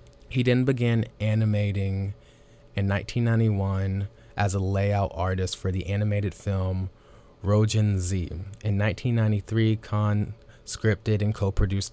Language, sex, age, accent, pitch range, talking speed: English, male, 20-39, American, 95-110 Hz, 115 wpm